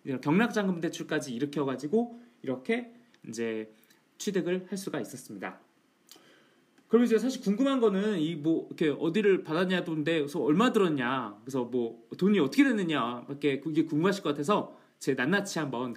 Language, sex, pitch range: Korean, male, 140-215 Hz